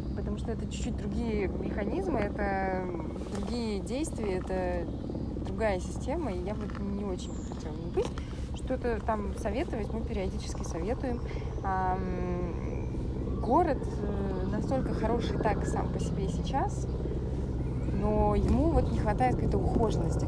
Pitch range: 75-110 Hz